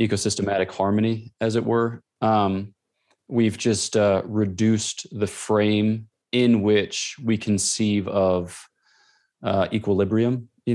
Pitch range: 100-115 Hz